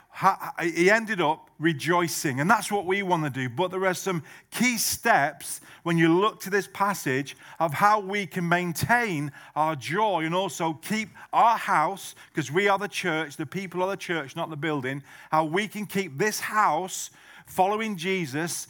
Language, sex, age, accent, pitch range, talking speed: English, male, 40-59, British, 160-200 Hz, 180 wpm